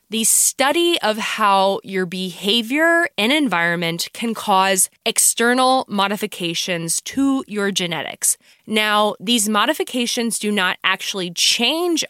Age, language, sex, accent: 20-39, English, female, American